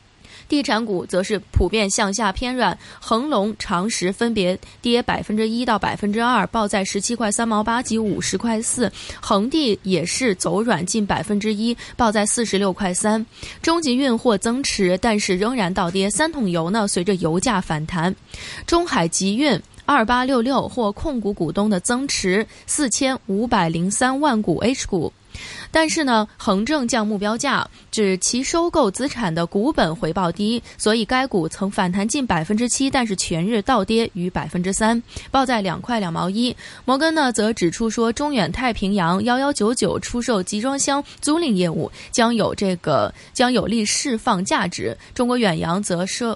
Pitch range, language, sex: 190-245 Hz, Chinese, female